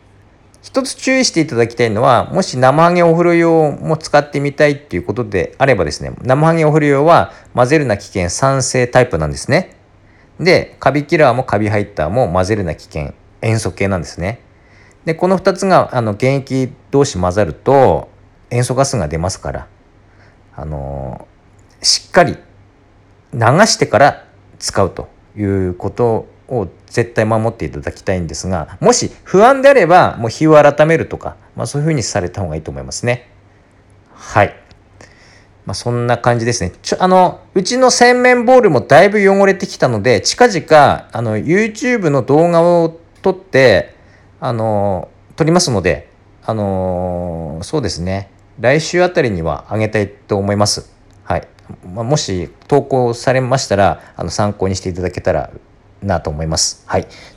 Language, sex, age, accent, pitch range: Japanese, male, 50-69, native, 95-140 Hz